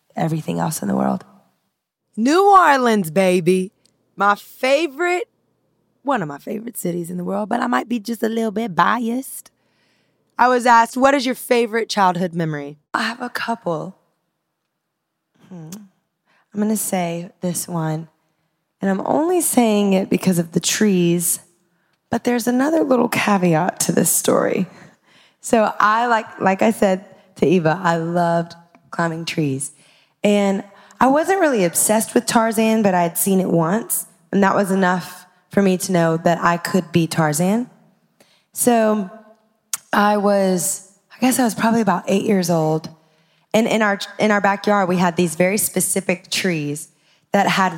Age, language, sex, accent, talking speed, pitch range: 20-39, English, female, American, 160 wpm, 175-220 Hz